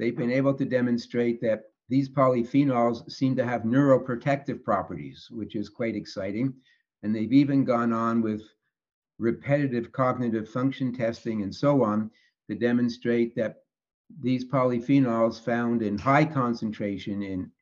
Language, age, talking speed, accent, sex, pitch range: English, 60-79, 135 wpm, American, male, 110-130 Hz